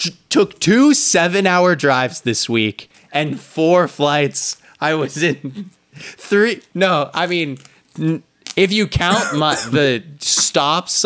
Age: 20-39